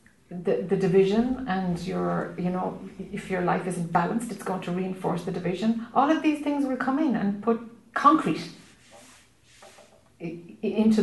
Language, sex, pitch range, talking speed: English, female, 190-230 Hz, 160 wpm